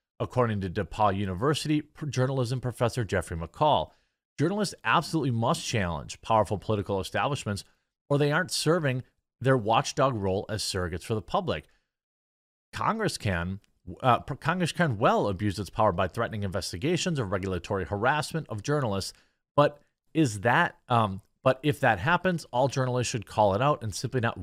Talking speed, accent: 150 wpm, American